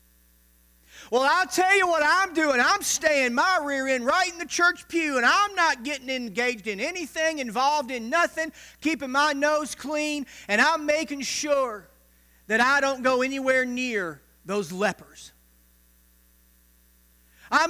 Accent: American